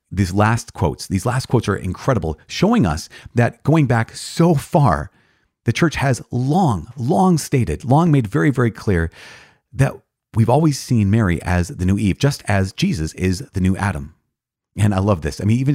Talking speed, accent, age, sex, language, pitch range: 185 wpm, American, 30-49, male, English, 90-115 Hz